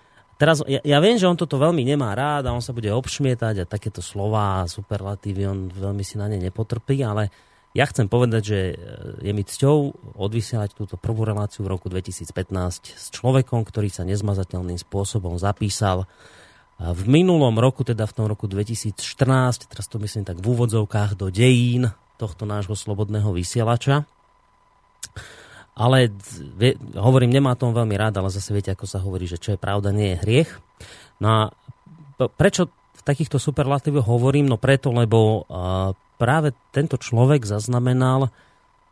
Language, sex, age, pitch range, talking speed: Slovak, male, 30-49, 100-125 Hz, 155 wpm